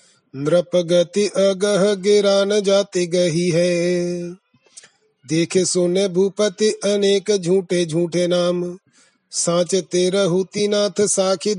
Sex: male